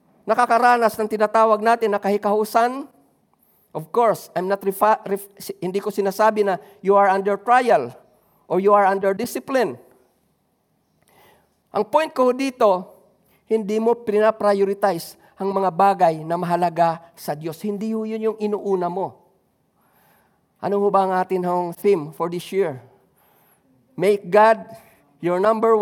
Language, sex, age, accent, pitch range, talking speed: Filipino, male, 50-69, native, 185-220 Hz, 130 wpm